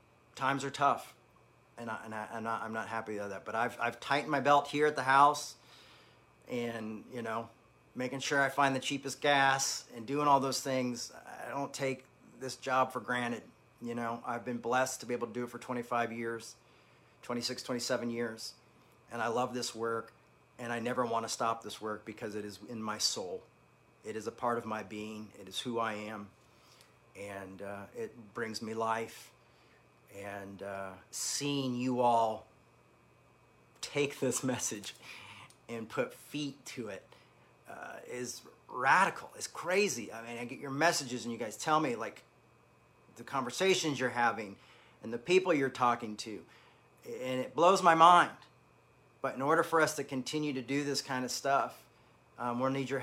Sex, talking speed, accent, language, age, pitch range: male, 185 wpm, American, English, 40-59, 115-140 Hz